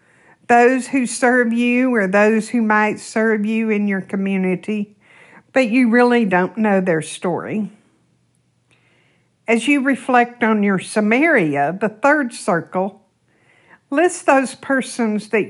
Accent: American